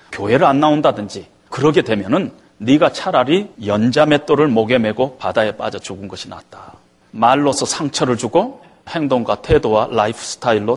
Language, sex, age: Korean, male, 40-59